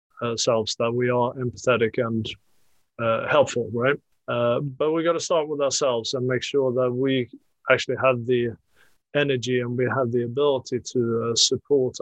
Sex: male